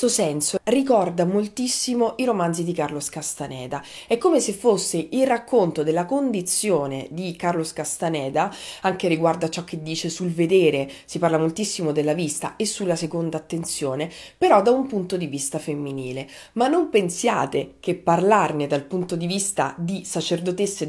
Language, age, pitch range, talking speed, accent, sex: Italian, 30-49, 150-195 Hz, 155 wpm, native, female